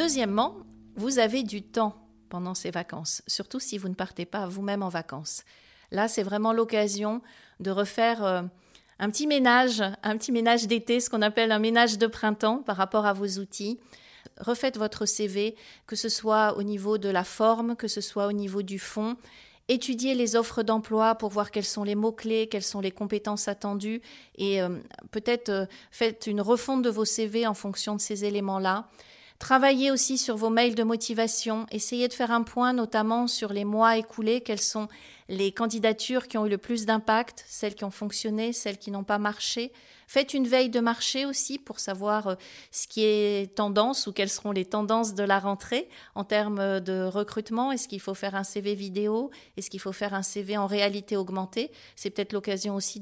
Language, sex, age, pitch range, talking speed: French, female, 40-59, 200-230 Hz, 190 wpm